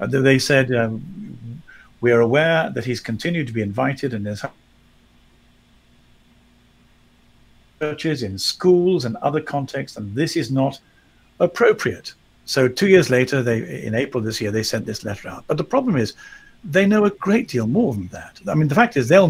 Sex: male